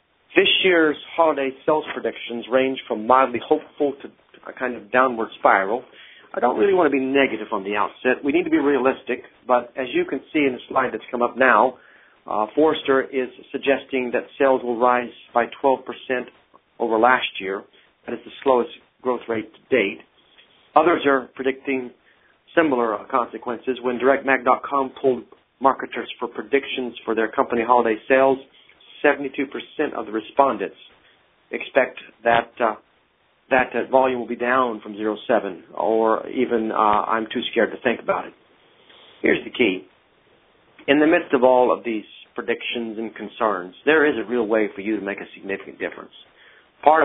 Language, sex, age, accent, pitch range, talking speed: English, male, 40-59, American, 115-135 Hz, 165 wpm